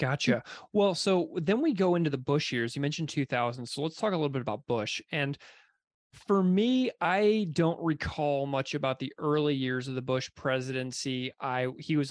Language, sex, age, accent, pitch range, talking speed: English, male, 30-49, American, 130-170 Hz, 195 wpm